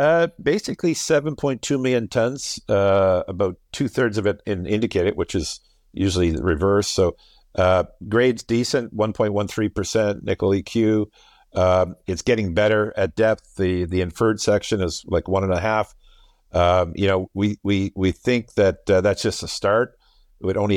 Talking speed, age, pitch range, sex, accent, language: 160 wpm, 50-69, 90-105 Hz, male, American, English